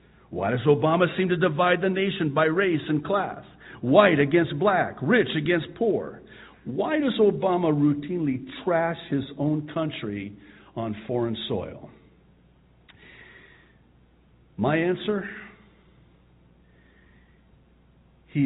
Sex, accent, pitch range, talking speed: male, American, 90-135 Hz, 105 wpm